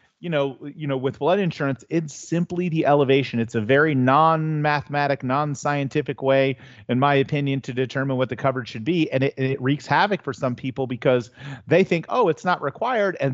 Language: English